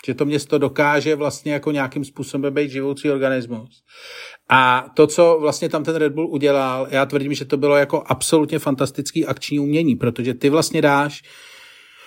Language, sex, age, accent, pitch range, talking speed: Czech, male, 40-59, native, 135-165 Hz, 170 wpm